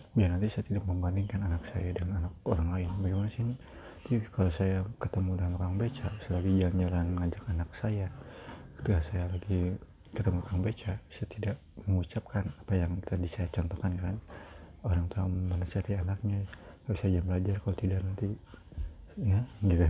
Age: 30-49